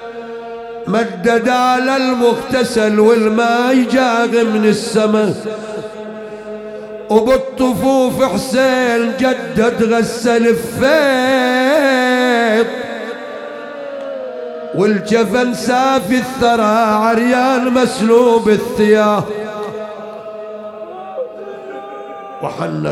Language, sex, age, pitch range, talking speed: English, male, 50-69, 210-235 Hz, 50 wpm